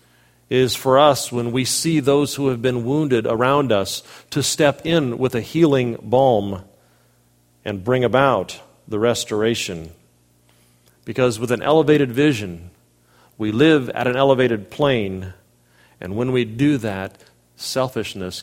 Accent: American